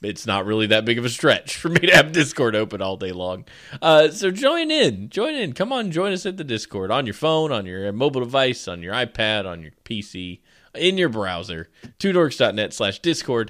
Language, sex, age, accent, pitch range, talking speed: English, male, 20-39, American, 105-180 Hz, 220 wpm